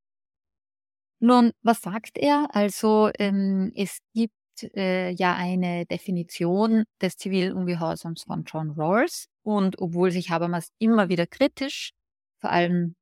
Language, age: German, 30-49